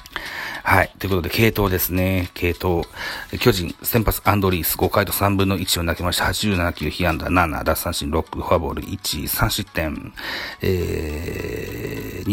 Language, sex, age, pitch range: Japanese, male, 40-59, 85-100 Hz